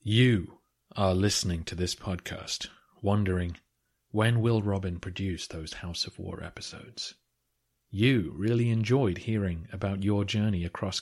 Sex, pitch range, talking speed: male, 95-115 Hz, 130 wpm